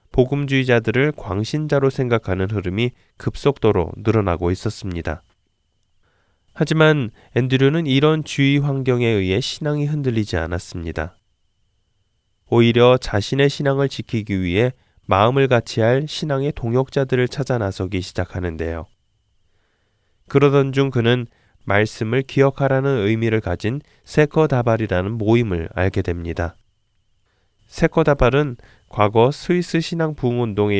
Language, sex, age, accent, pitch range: Korean, male, 20-39, native, 95-135 Hz